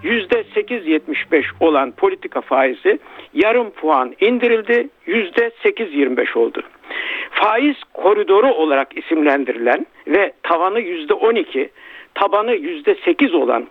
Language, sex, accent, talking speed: Turkish, male, native, 85 wpm